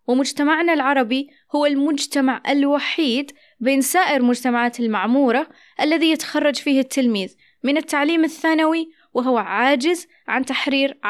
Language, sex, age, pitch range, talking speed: Arabic, female, 20-39, 235-295 Hz, 110 wpm